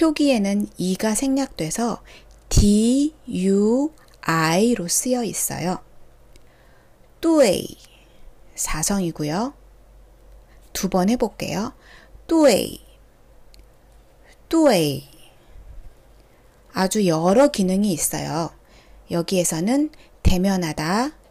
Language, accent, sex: Korean, native, female